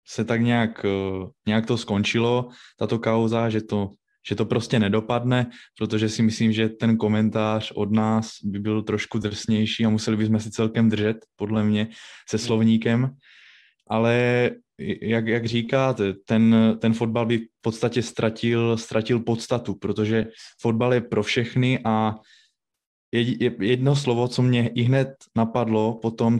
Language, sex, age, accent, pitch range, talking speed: Czech, male, 20-39, native, 110-120 Hz, 145 wpm